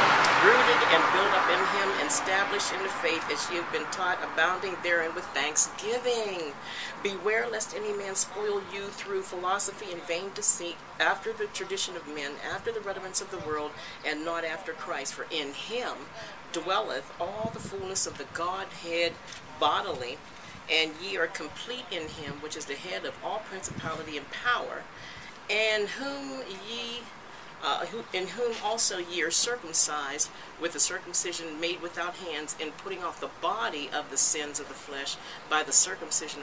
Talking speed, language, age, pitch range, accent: 165 wpm, English, 40-59, 170-235 Hz, American